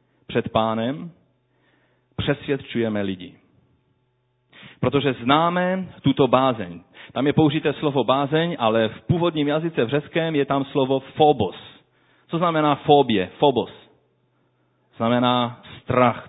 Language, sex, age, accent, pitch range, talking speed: Czech, male, 40-59, native, 125-165 Hz, 105 wpm